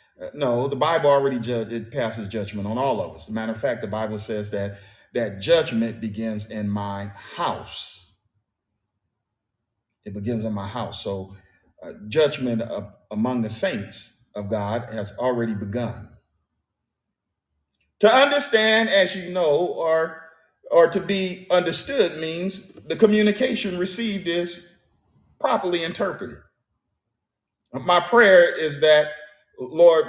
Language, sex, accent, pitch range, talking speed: English, male, American, 110-175 Hz, 130 wpm